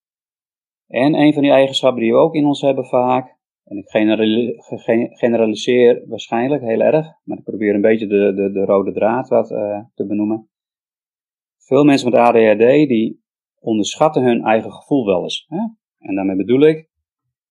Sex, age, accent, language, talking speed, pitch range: male, 30-49, Dutch, Dutch, 165 wpm, 105-140 Hz